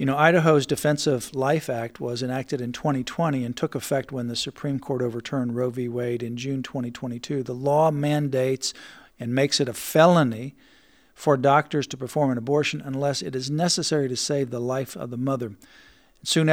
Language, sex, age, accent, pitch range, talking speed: English, male, 50-69, American, 135-160 Hz, 180 wpm